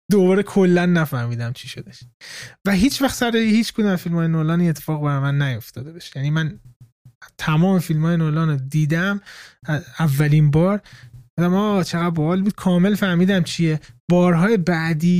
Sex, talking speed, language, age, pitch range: male, 150 wpm, Persian, 20-39, 140-180 Hz